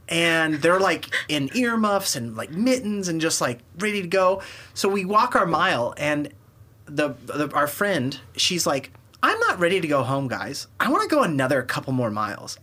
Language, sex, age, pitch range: English, male, 30-49, 140-215 Hz